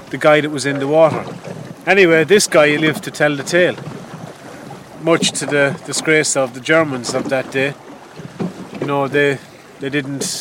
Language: English